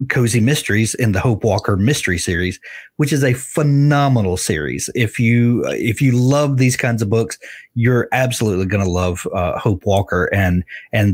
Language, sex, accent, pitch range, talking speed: English, male, American, 100-130 Hz, 170 wpm